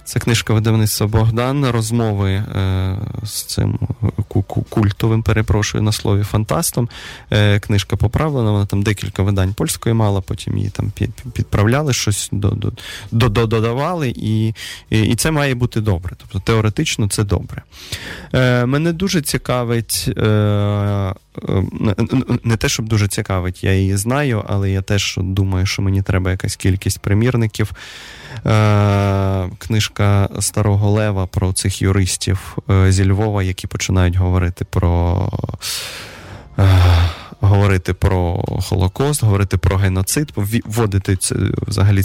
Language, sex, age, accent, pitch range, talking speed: Russian, male, 20-39, native, 95-115 Hz, 115 wpm